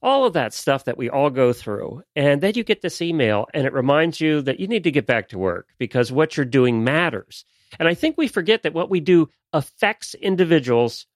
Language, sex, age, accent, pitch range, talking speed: English, male, 40-59, American, 125-180 Hz, 230 wpm